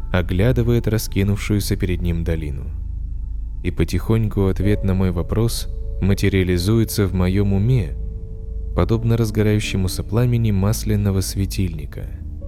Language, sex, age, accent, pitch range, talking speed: Russian, male, 20-39, native, 90-110 Hz, 95 wpm